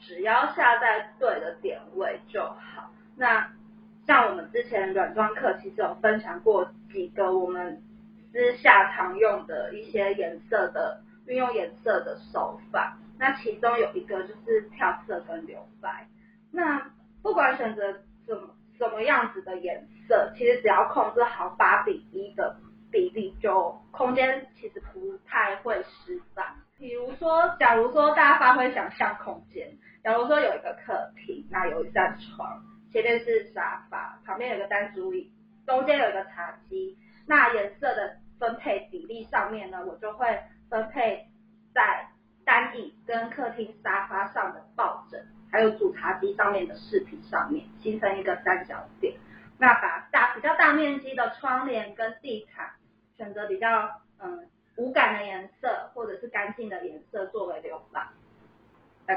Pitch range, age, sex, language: 210-270 Hz, 20-39, female, Chinese